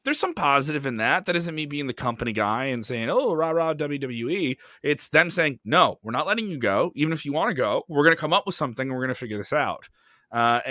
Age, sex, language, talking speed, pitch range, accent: 30-49, male, English, 270 wpm, 115-165 Hz, American